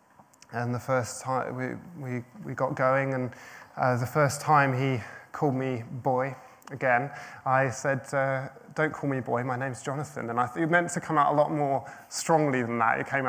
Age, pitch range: 20-39, 125-145 Hz